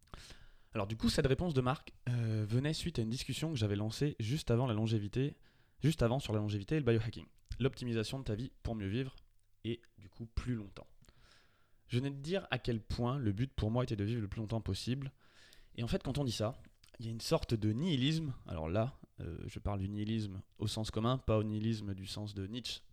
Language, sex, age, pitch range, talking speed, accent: French, male, 20-39, 105-130 Hz, 235 wpm, French